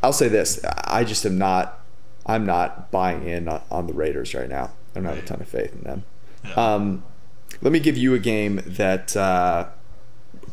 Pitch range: 100-130 Hz